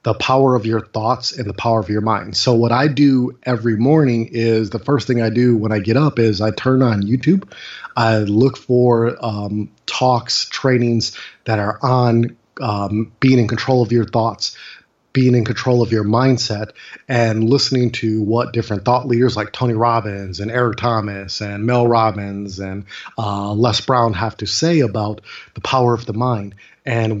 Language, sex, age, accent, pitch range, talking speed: English, male, 30-49, American, 110-125 Hz, 185 wpm